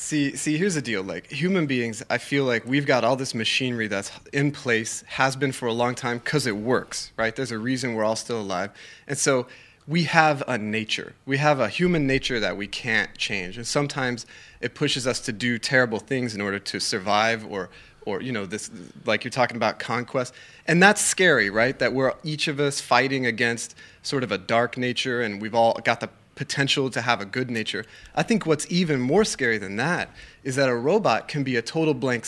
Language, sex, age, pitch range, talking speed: English, male, 30-49, 120-150 Hz, 220 wpm